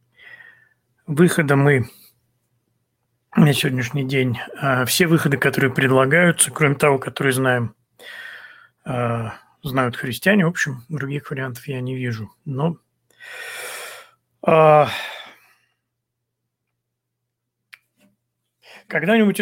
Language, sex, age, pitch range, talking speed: Russian, male, 40-59, 125-155 Hz, 75 wpm